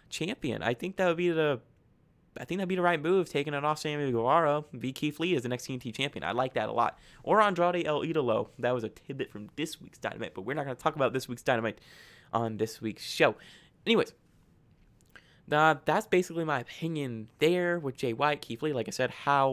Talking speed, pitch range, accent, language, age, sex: 225 wpm, 135-185 Hz, American, English, 20-39, male